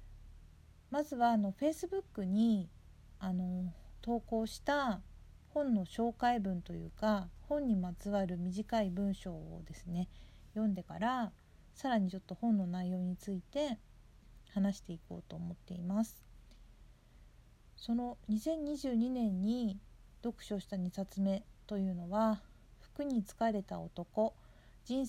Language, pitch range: Japanese, 185-240 Hz